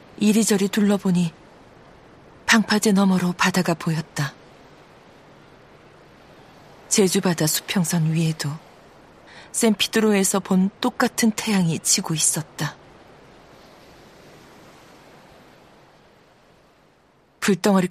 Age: 40-59